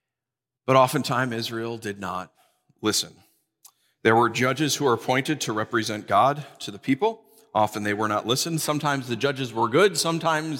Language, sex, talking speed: English, male, 165 wpm